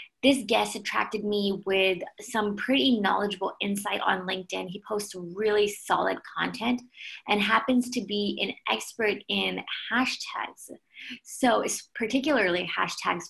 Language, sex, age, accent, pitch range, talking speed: English, female, 20-39, American, 195-250 Hz, 125 wpm